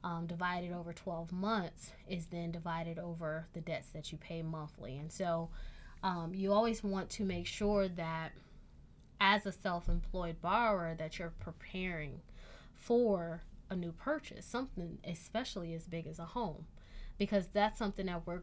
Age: 20-39